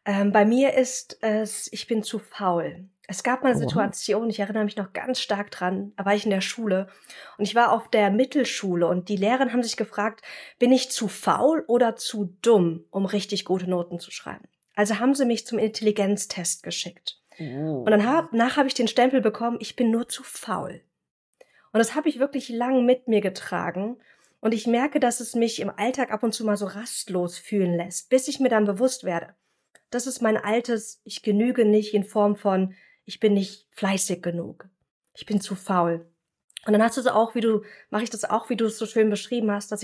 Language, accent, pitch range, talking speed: German, German, 200-235 Hz, 210 wpm